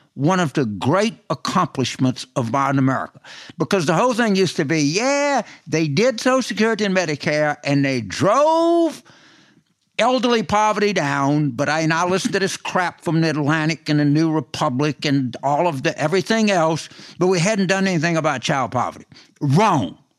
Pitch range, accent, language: 140-190 Hz, American, English